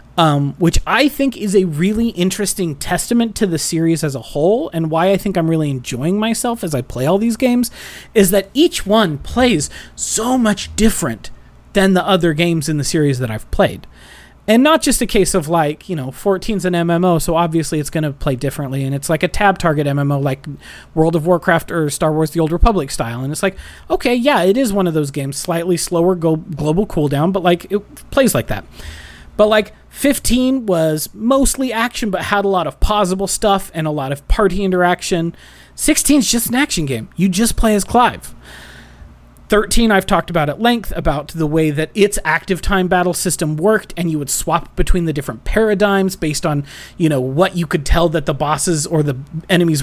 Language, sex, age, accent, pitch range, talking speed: English, male, 30-49, American, 155-205 Hz, 205 wpm